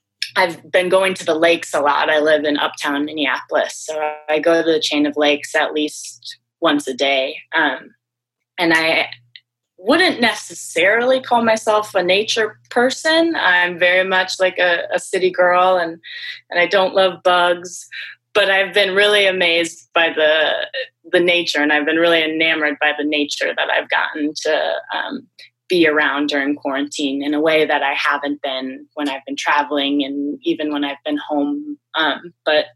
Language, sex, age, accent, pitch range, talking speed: English, female, 20-39, American, 145-185 Hz, 175 wpm